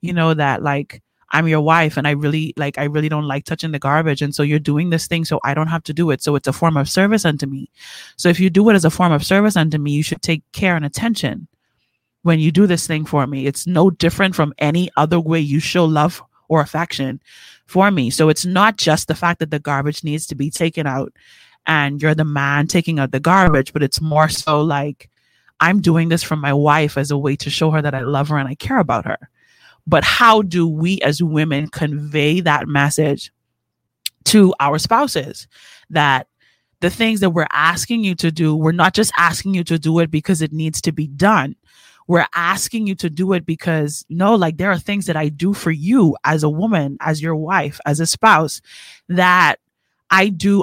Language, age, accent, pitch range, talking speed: English, 30-49, American, 150-180 Hz, 225 wpm